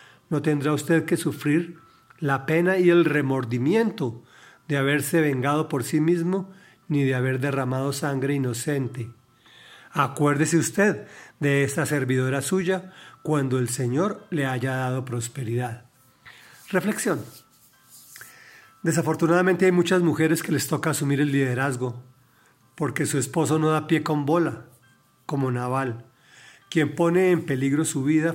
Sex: male